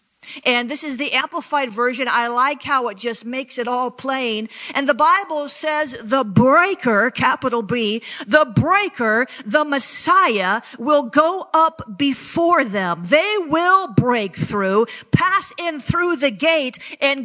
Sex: female